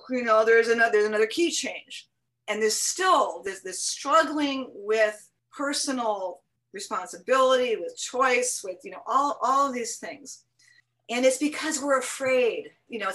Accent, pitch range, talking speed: American, 190-270 Hz, 160 wpm